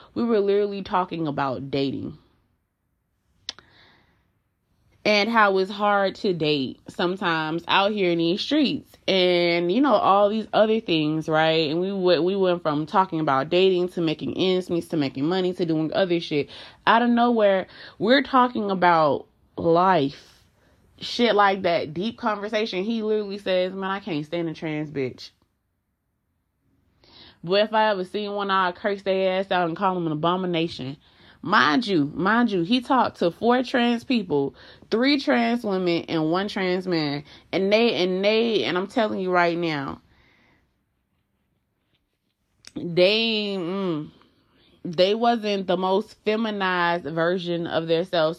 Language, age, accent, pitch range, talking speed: English, 20-39, American, 165-205 Hz, 155 wpm